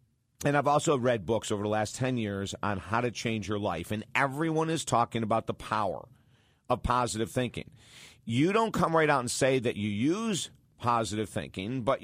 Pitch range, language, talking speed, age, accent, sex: 105-135 Hz, English, 195 wpm, 50-69, American, male